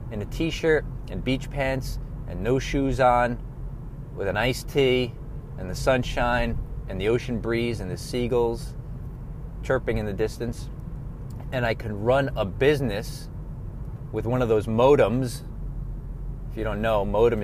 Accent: American